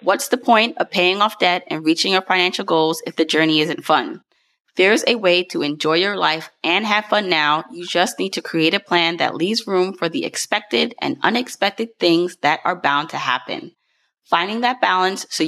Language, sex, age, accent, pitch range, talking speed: English, female, 20-39, American, 160-200 Hz, 205 wpm